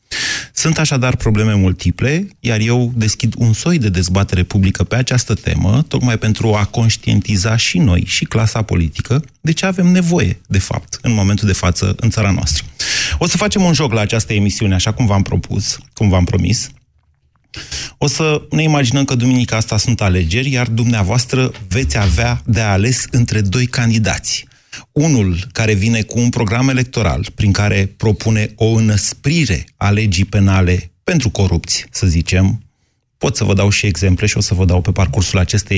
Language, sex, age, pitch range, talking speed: Romanian, male, 30-49, 100-125 Hz, 175 wpm